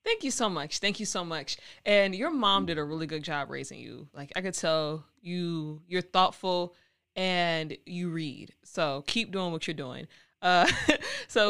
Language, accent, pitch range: English, American, 160-195 Hz